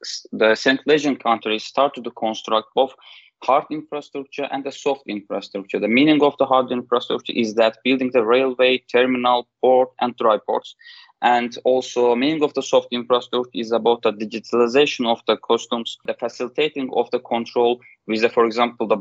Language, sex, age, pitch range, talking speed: English, male, 20-39, 115-140 Hz, 170 wpm